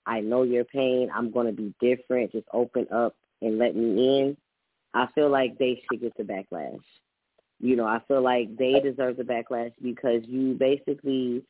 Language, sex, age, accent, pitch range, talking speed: English, female, 10-29, American, 125-145 Hz, 190 wpm